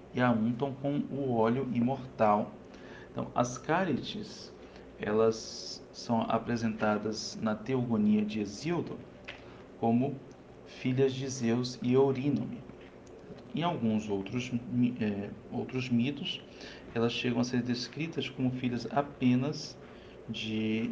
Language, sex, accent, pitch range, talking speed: Portuguese, male, Brazilian, 105-125 Hz, 105 wpm